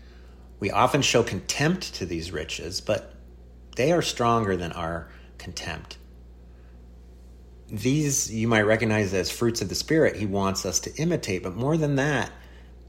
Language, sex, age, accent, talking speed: English, male, 30-49, American, 150 wpm